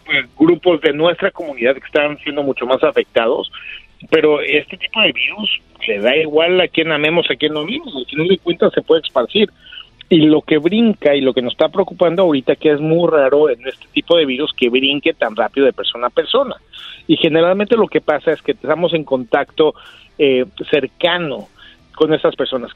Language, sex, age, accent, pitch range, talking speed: Spanish, male, 40-59, Mexican, 140-190 Hz, 205 wpm